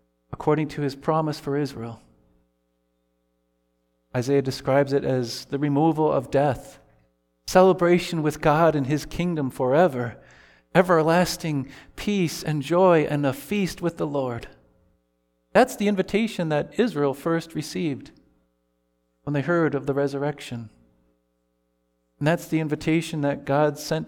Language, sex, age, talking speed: English, male, 40-59, 125 wpm